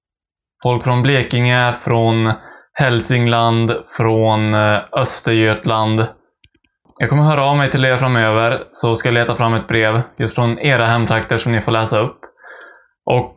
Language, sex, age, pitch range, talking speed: Swedish, male, 20-39, 115-135 Hz, 150 wpm